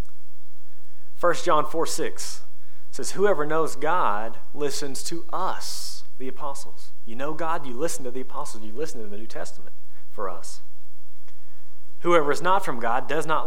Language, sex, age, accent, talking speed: English, male, 30-49, American, 160 wpm